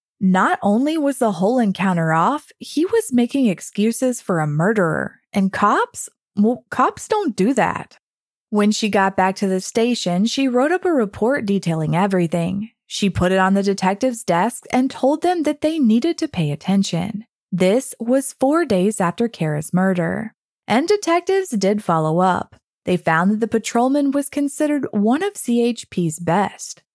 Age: 20-39